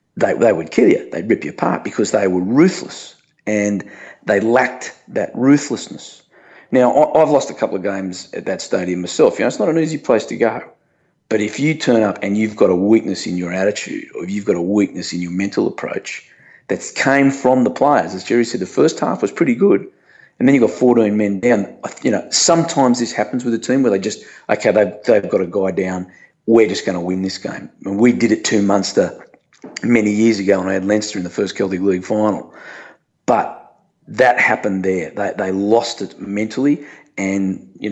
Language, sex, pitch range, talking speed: English, male, 95-115 Hz, 225 wpm